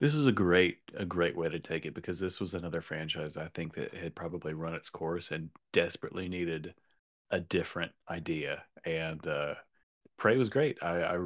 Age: 30-49